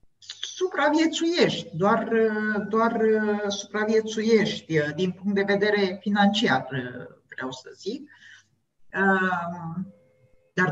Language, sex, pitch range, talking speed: Romanian, female, 165-235 Hz, 75 wpm